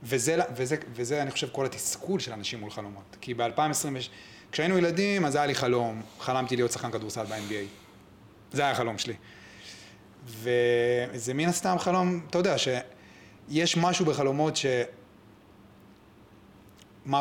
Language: Hebrew